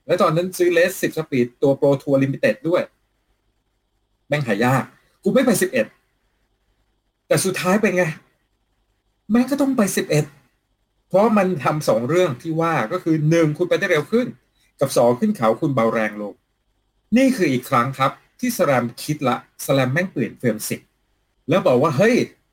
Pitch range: 115-185 Hz